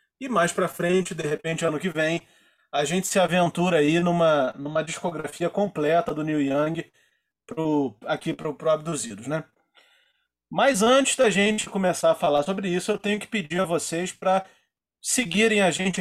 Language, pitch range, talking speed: Portuguese, 150-190 Hz, 170 wpm